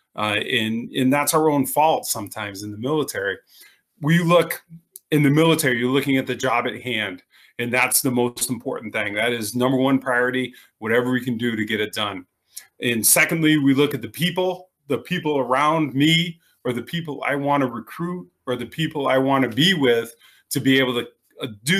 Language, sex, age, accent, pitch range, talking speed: English, male, 30-49, American, 120-150 Hz, 195 wpm